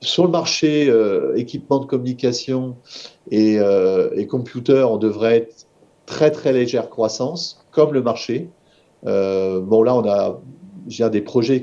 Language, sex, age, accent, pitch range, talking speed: French, male, 40-59, French, 110-150 Hz, 150 wpm